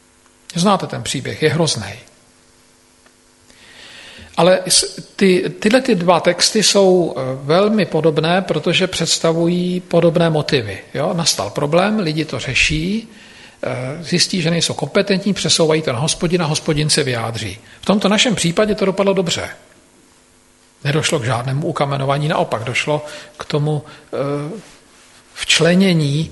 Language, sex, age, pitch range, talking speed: Slovak, male, 50-69, 135-175 Hz, 115 wpm